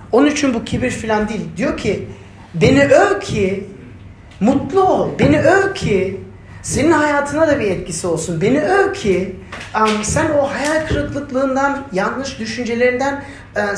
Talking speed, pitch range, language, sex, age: 145 wpm, 165-240 Hz, Turkish, male, 40-59